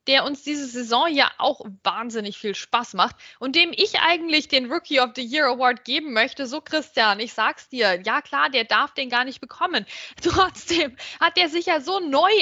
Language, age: German, 20-39